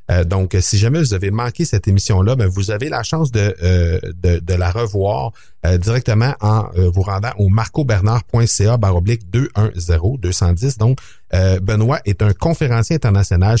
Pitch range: 95-125 Hz